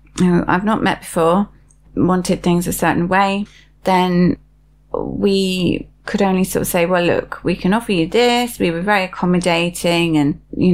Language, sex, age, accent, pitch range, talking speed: English, female, 30-49, British, 160-195 Hz, 160 wpm